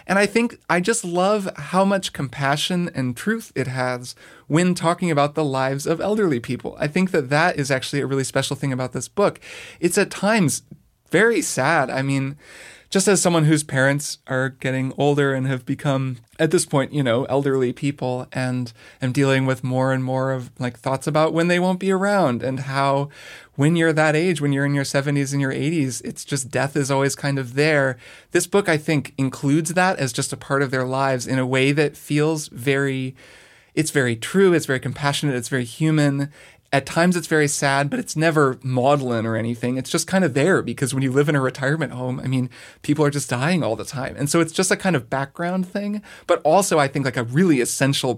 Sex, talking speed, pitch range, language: male, 215 wpm, 130-160 Hz, English